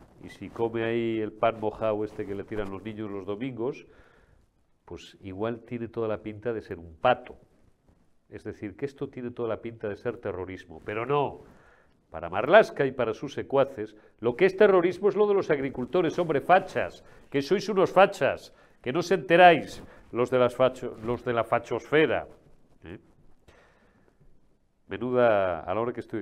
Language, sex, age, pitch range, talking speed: Spanish, male, 40-59, 110-140 Hz, 175 wpm